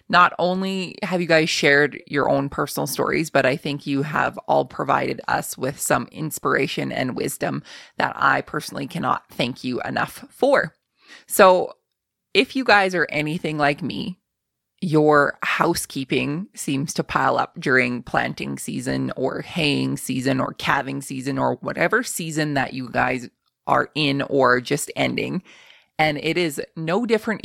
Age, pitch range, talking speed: 20-39, 140-180 Hz, 155 wpm